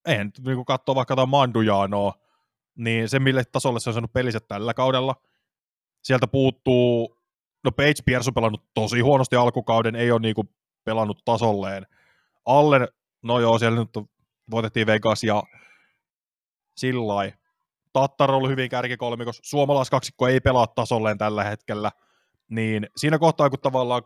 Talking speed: 135 wpm